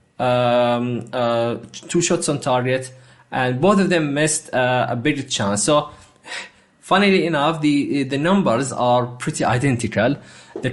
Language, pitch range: English, 110-150 Hz